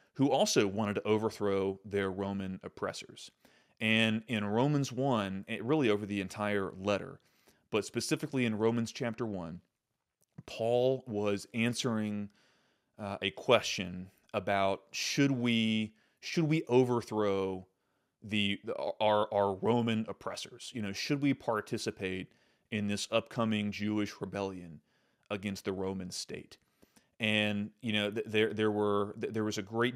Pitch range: 100-115 Hz